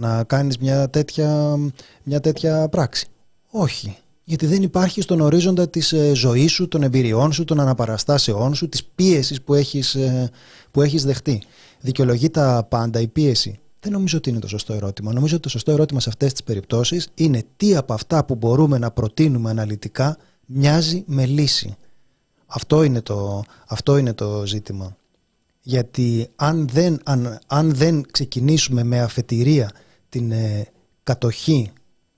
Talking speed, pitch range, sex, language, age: 145 wpm, 115-150 Hz, male, Greek, 30-49